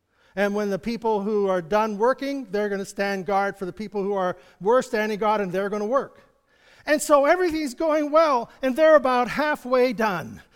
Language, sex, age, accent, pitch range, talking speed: English, male, 50-69, American, 185-245 Hz, 210 wpm